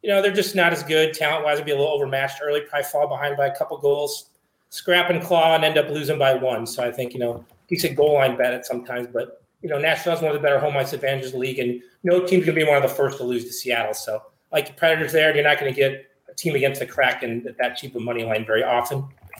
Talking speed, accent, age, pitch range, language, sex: 290 wpm, American, 30-49, 130-155 Hz, English, male